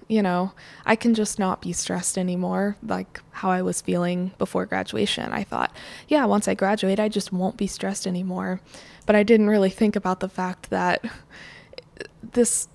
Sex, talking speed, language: female, 180 wpm, English